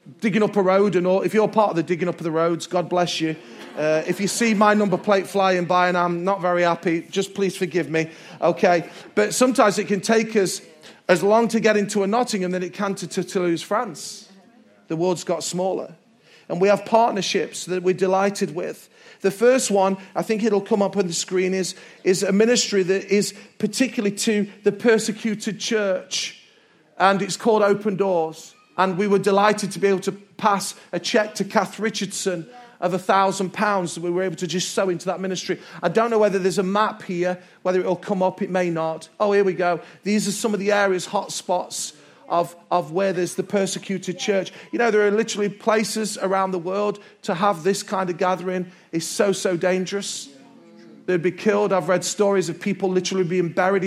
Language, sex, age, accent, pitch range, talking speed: English, male, 40-59, British, 180-205 Hz, 210 wpm